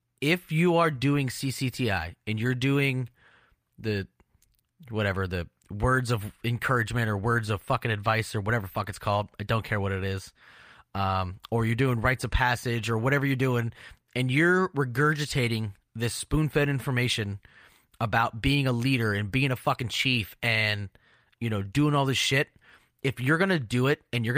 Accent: American